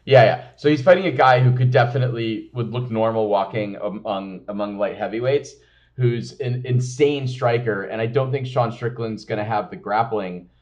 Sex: male